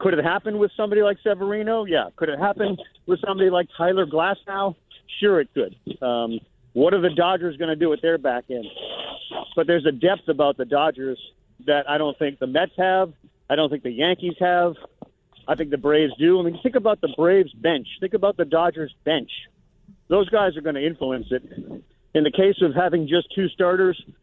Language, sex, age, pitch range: English, male, 40-59, 145-185 Hz